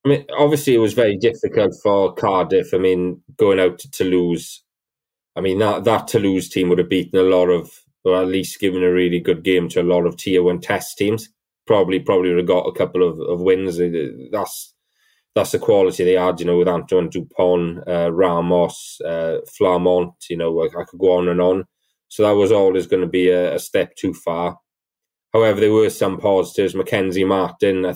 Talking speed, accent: 205 wpm, British